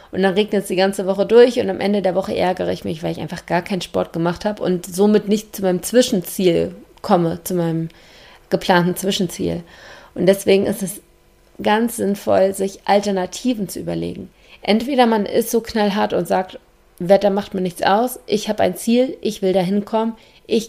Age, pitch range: 30-49, 180-230 Hz